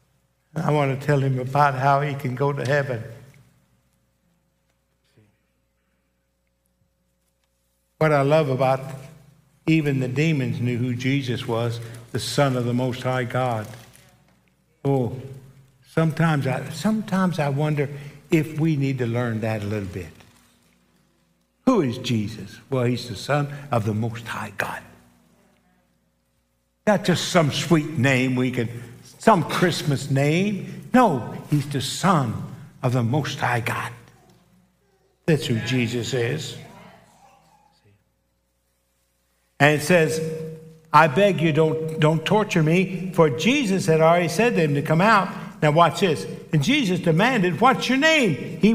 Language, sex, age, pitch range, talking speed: English, male, 60-79, 120-170 Hz, 135 wpm